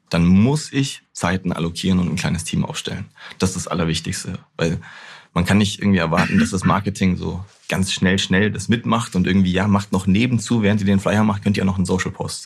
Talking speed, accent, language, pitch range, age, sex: 225 wpm, German, German, 95-110 Hz, 30-49, male